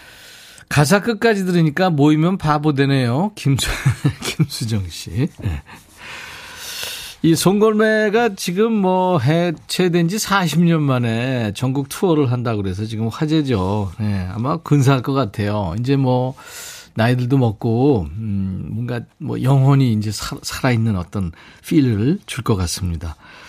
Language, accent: Korean, native